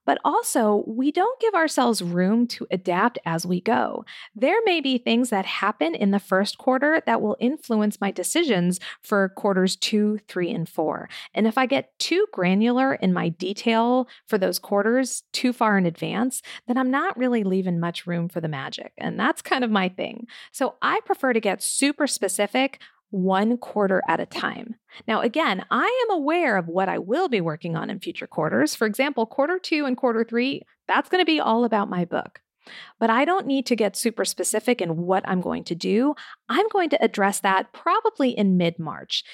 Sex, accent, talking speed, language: female, American, 195 wpm, English